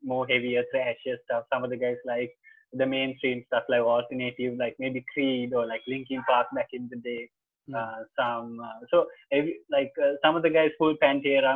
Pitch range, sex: 125-175 Hz, male